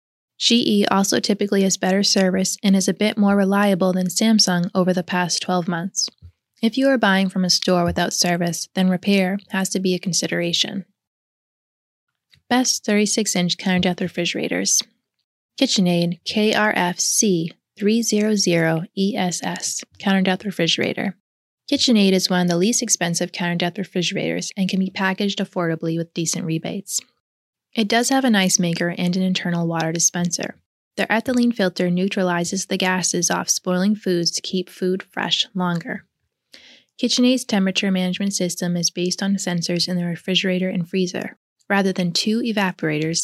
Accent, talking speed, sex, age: American, 145 wpm, female, 20-39